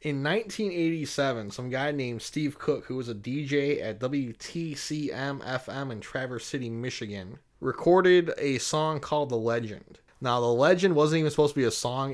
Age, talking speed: 20-39, 170 wpm